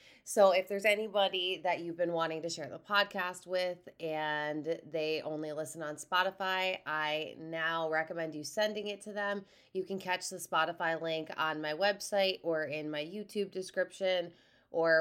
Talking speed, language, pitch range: 170 wpm, English, 155-185 Hz